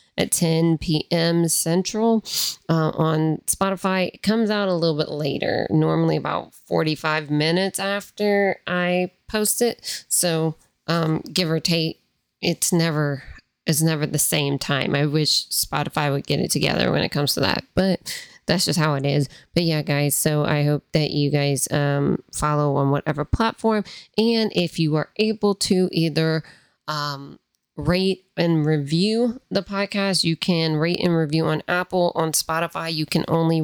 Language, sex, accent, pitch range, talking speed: English, female, American, 150-190 Hz, 160 wpm